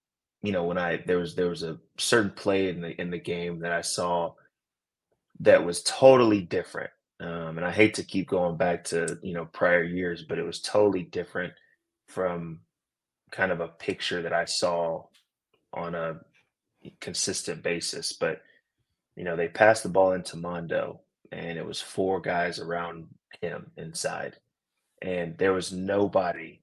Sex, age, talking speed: male, 20-39, 165 wpm